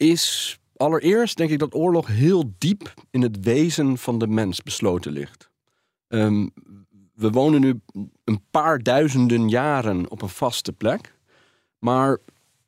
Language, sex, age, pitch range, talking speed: Dutch, male, 40-59, 110-145 Hz, 135 wpm